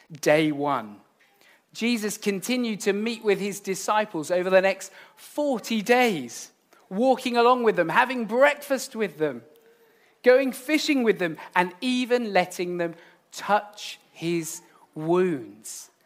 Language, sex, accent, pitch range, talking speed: English, male, British, 165-220 Hz, 125 wpm